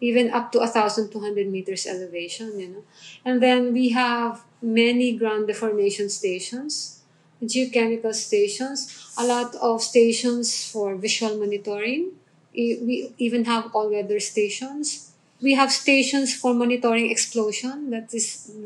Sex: female